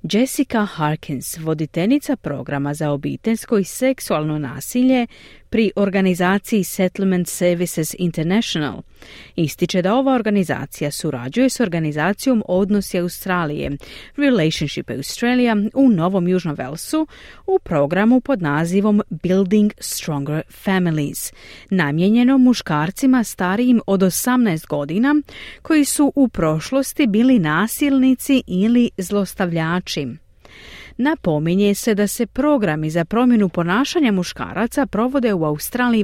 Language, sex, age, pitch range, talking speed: Croatian, female, 40-59, 160-245 Hz, 105 wpm